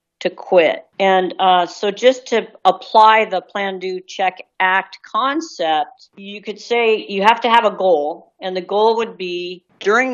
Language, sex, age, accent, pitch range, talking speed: English, female, 50-69, American, 180-215 Hz, 155 wpm